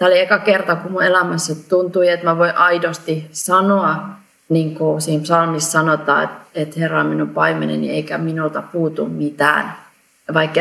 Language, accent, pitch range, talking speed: Finnish, native, 155-180 Hz, 155 wpm